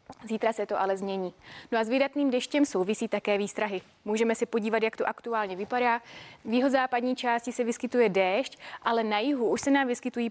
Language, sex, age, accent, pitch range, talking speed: Czech, female, 20-39, native, 200-245 Hz, 200 wpm